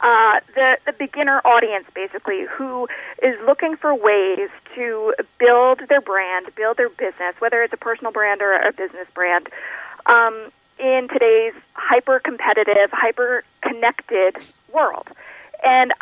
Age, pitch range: 40-59, 200-280 Hz